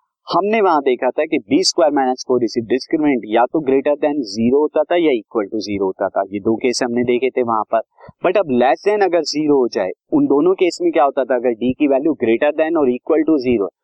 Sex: male